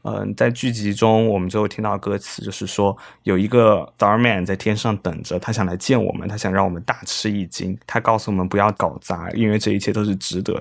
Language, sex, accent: Chinese, male, native